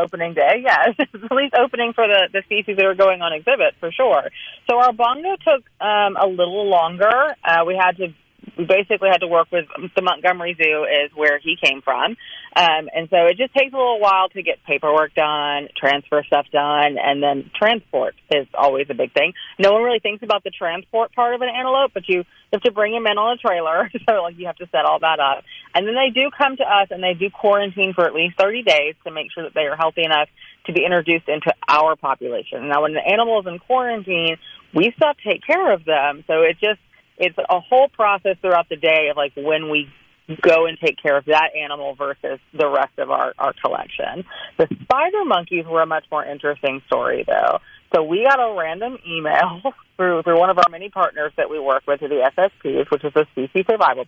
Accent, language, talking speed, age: American, English, 220 wpm, 30-49